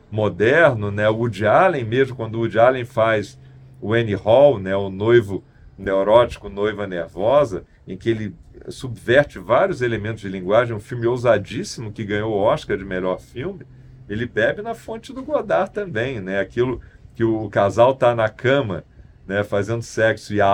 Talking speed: 165 wpm